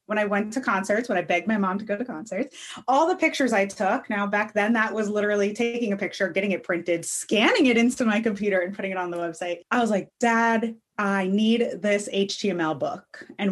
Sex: female